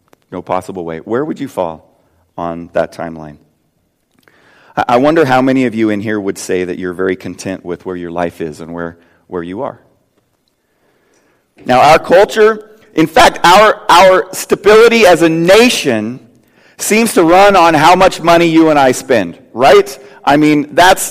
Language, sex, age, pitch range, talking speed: English, male, 40-59, 140-215 Hz, 170 wpm